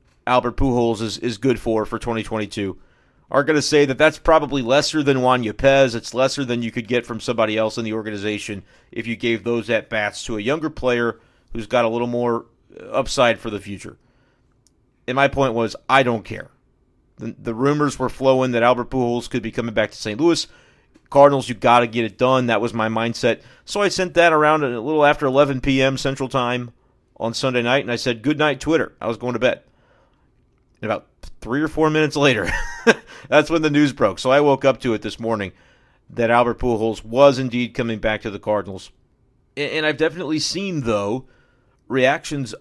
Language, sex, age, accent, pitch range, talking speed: English, male, 30-49, American, 115-140 Hz, 205 wpm